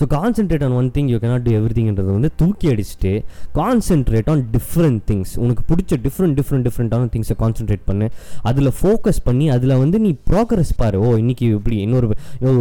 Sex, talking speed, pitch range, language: male, 170 wpm, 110-145 Hz, Tamil